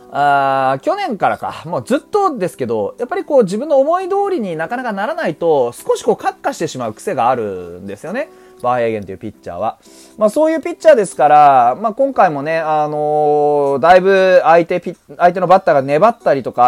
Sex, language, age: male, Japanese, 30-49